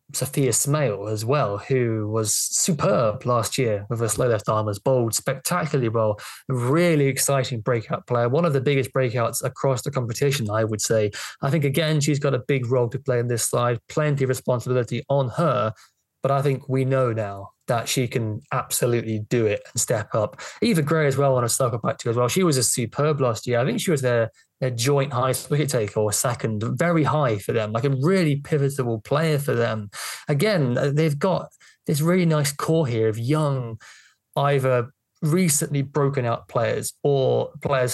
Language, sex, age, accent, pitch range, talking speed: English, male, 20-39, British, 115-145 Hz, 190 wpm